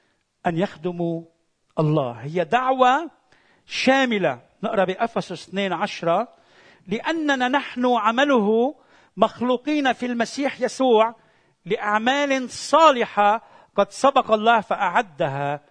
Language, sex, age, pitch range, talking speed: Arabic, male, 50-69, 185-290 Hz, 90 wpm